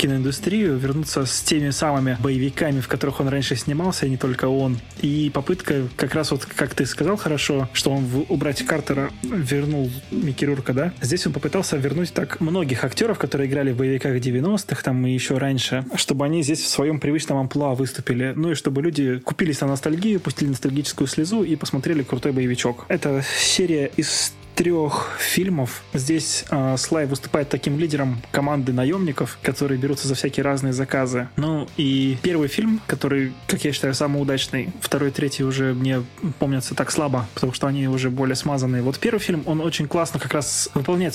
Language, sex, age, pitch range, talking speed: Russian, male, 20-39, 135-160 Hz, 175 wpm